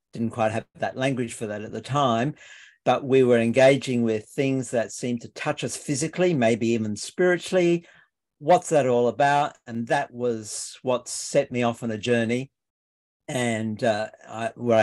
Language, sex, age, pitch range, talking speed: English, male, 50-69, 110-135 Hz, 175 wpm